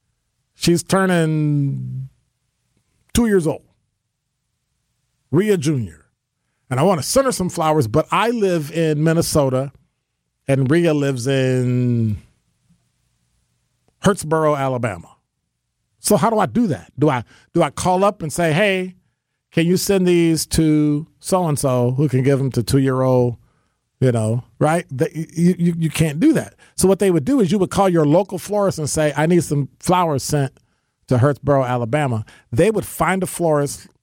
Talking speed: 155 wpm